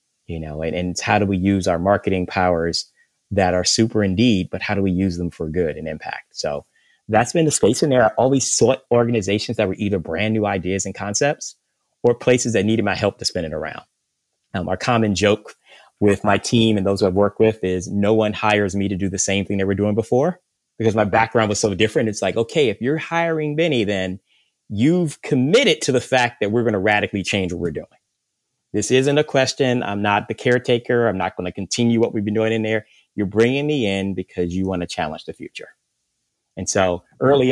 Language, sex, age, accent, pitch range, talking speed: English, male, 30-49, American, 95-115 Hz, 225 wpm